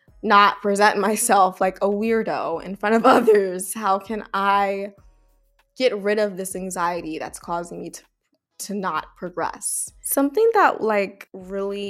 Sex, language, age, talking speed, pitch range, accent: female, English, 20-39, 145 wpm, 180-210 Hz, American